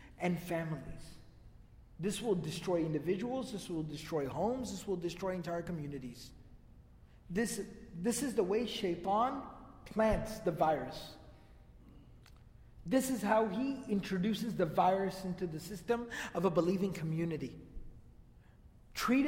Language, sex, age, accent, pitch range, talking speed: English, male, 40-59, American, 175-220 Hz, 120 wpm